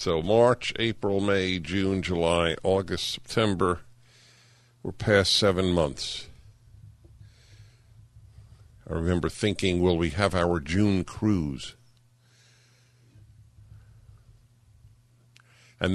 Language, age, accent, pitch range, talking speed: English, 50-69, American, 100-120 Hz, 85 wpm